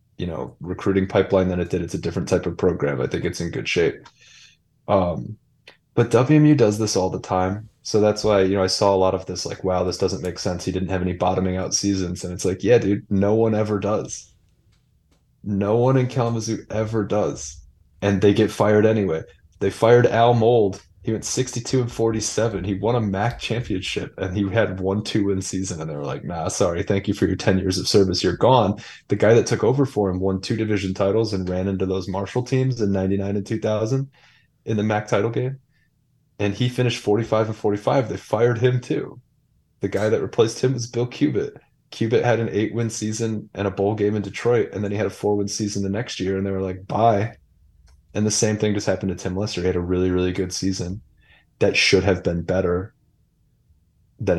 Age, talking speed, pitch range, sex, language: 20-39, 225 wpm, 95-115 Hz, male, English